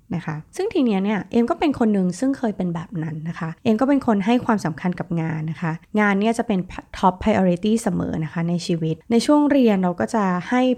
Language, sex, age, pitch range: Thai, female, 20-39, 170-230 Hz